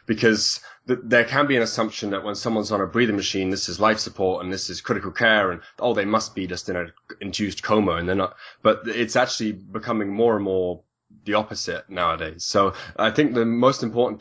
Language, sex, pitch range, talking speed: English, male, 95-110 Hz, 220 wpm